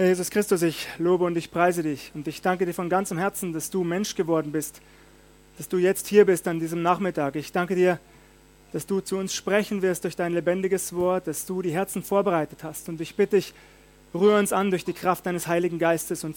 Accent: German